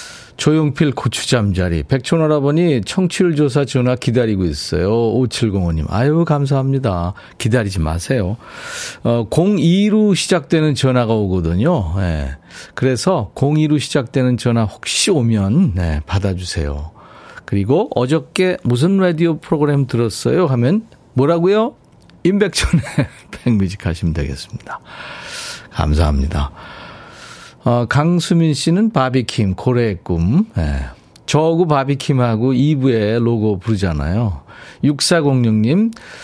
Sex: male